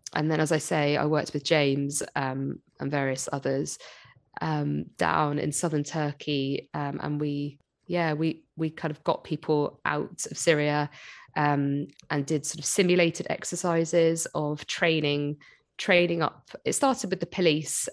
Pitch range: 140-165 Hz